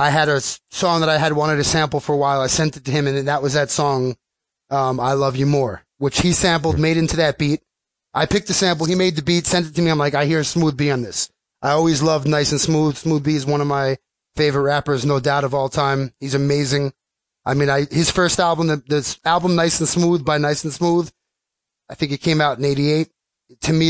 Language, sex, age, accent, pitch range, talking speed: English, male, 30-49, American, 145-170 Hz, 250 wpm